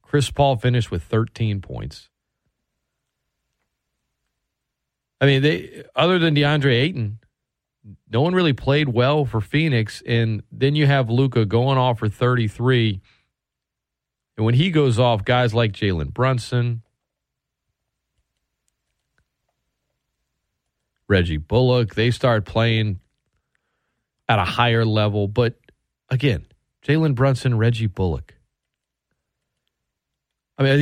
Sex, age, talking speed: male, 40-59, 110 wpm